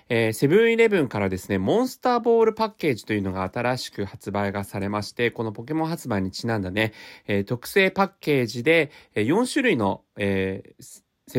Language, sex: Japanese, male